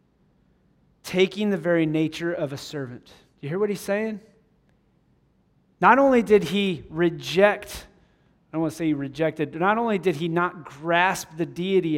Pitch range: 155-200 Hz